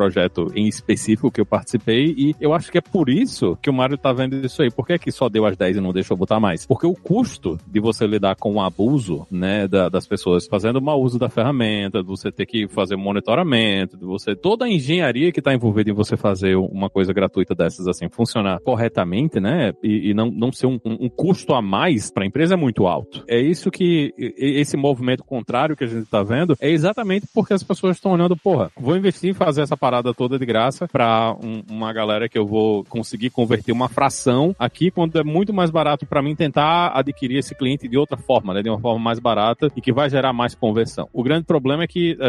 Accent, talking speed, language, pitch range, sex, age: Brazilian, 235 wpm, Portuguese, 110-150 Hz, male, 40-59